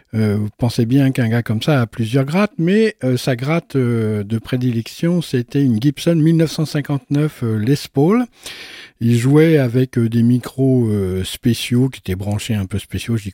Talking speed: 175 wpm